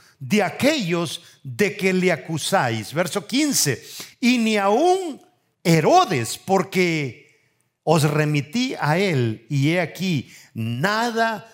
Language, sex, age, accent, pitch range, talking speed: English, male, 50-69, Mexican, 125-175 Hz, 110 wpm